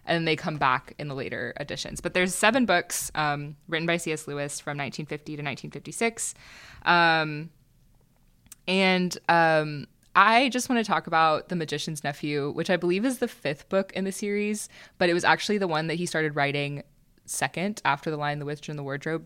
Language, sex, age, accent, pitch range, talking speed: English, female, 20-39, American, 145-190 Hz, 195 wpm